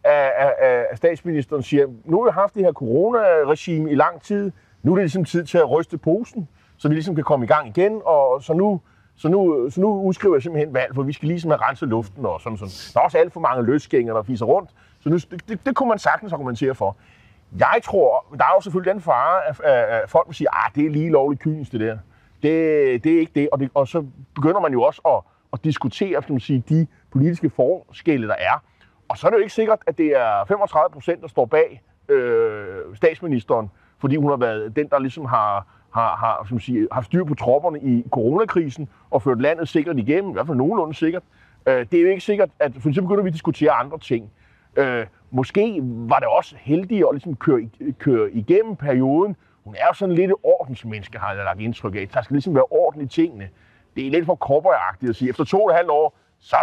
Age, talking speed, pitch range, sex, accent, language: 30-49, 230 wpm, 125-185 Hz, male, native, Danish